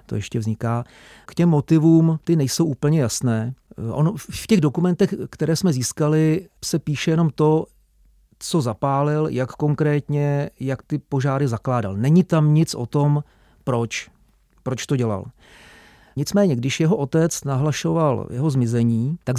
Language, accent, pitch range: Czech, native, 120-145 Hz